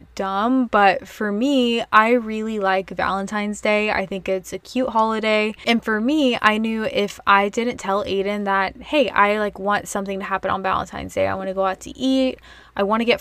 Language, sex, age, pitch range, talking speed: English, female, 20-39, 195-245 Hz, 215 wpm